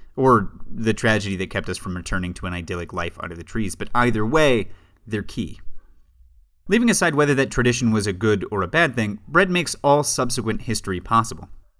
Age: 30-49